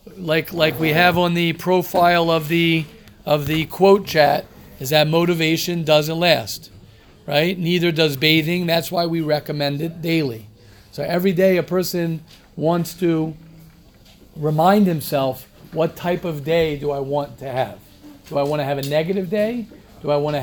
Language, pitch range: English, 155-185 Hz